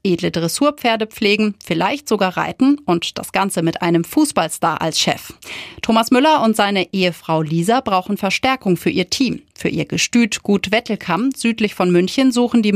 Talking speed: 165 wpm